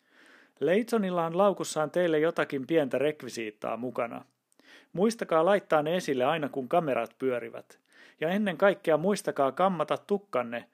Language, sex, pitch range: Finnish, male, 125-165 Hz